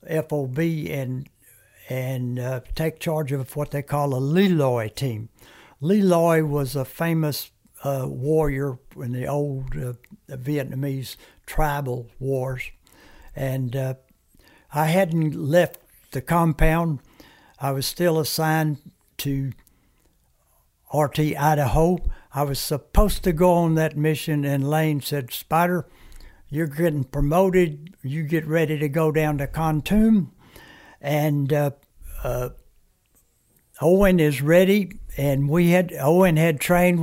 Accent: American